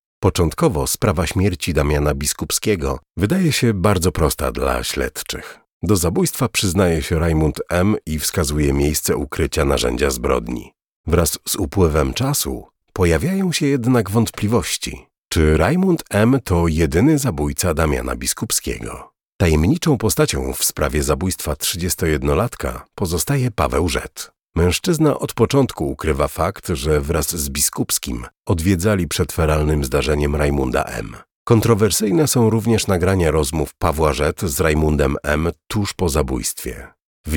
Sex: male